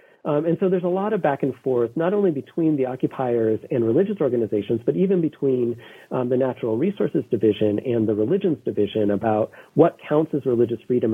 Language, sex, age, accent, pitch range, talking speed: English, male, 40-59, American, 115-160 Hz, 195 wpm